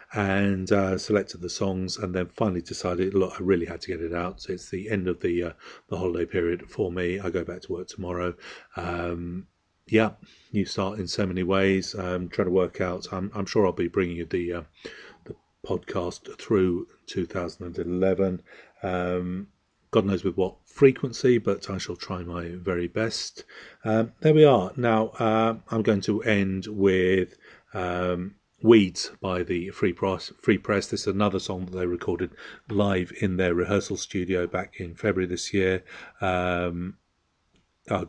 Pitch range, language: 90-100 Hz, English